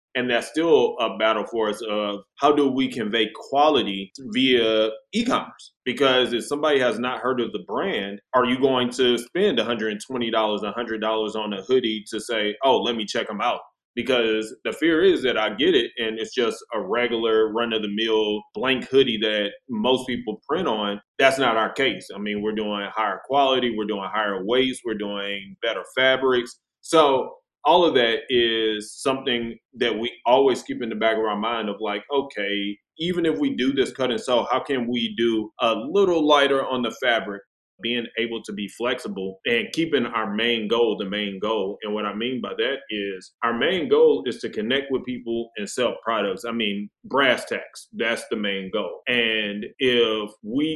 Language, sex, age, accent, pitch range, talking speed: English, male, 20-39, American, 105-130 Hz, 195 wpm